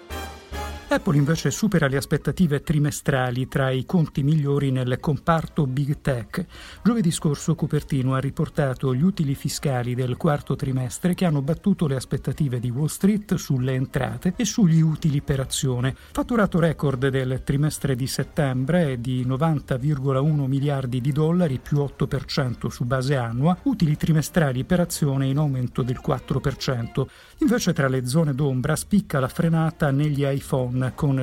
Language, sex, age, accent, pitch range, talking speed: Italian, male, 50-69, native, 130-165 Hz, 145 wpm